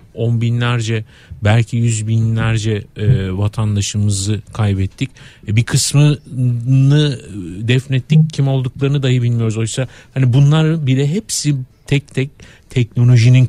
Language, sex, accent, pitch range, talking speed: Turkish, male, native, 110-145 Hz, 105 wpm